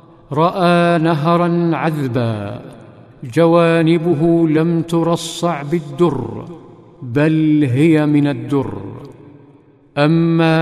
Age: 50-69